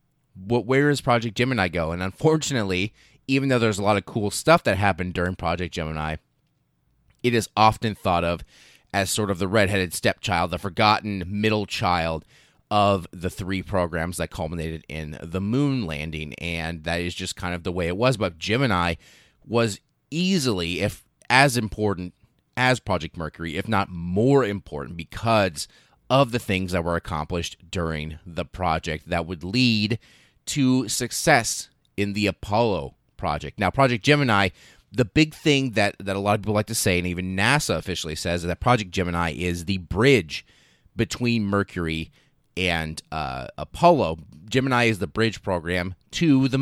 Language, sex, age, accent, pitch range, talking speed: English, male, 30-49, American, 85-115 Hz, 165 wpm